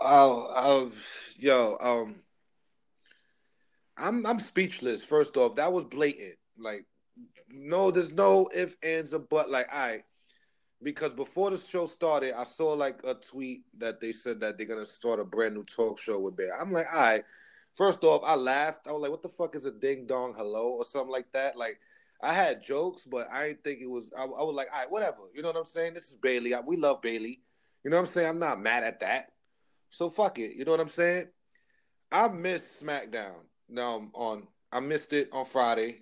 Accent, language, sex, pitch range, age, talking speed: American, English, male, 115-170 Hz, 30-49, 215 wpm